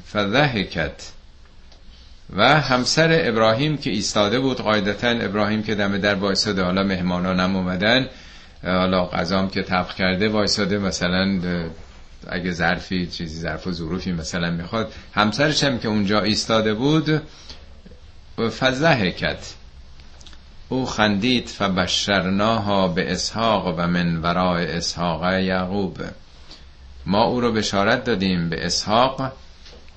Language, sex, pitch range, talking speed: Persian, male, 85-105 Hz, 110 wpm